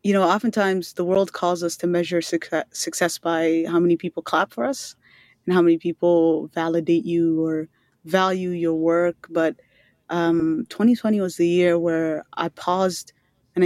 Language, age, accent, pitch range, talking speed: English, 20-39, American, 165-200 Hz, 165 wpm